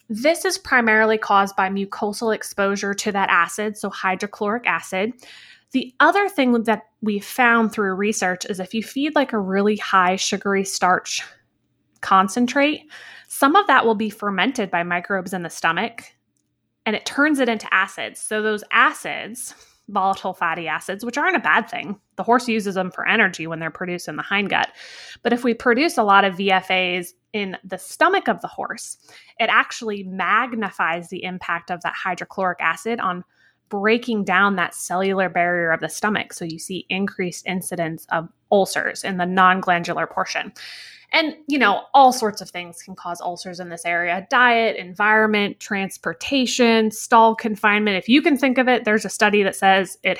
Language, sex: English, female